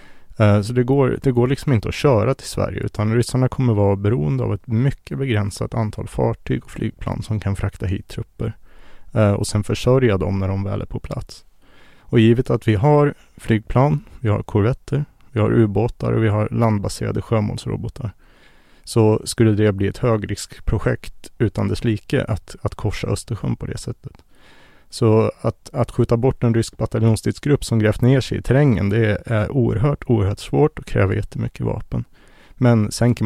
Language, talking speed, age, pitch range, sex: Swedish, 175 wpm, 30-49, 105-120 Hz, male